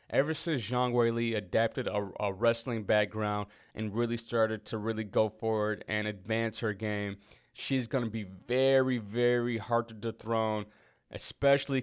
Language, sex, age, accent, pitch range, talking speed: English, male, 20-39, American, 105-130 Hz, 150 wpm